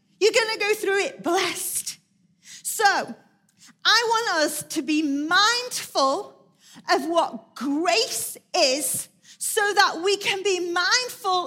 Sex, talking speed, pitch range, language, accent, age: female, 125 wpm, 270-390 Hz, English, British, 40-59